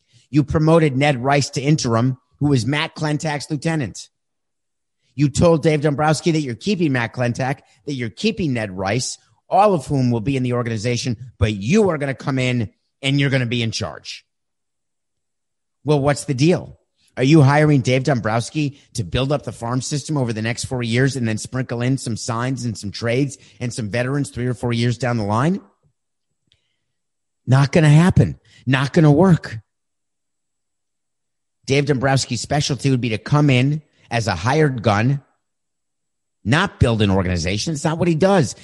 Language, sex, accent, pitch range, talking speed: English, male, American, 115-150 Hz, 180 wpm